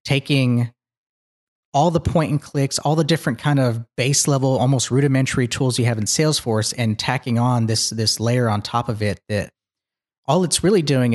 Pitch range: 110-130 Hz